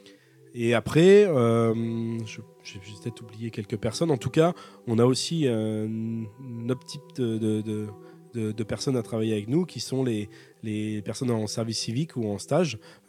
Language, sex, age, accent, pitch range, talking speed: French, male, 20-39, French, 110-130 Hz, 190 wpm